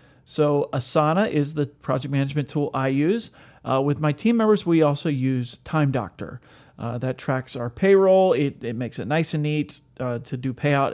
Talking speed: 190 wpm